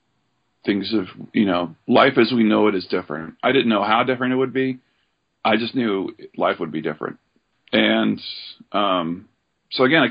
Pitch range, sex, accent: 95-115 Hz, male, American